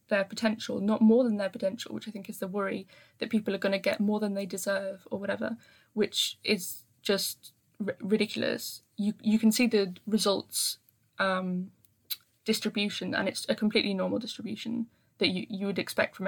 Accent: British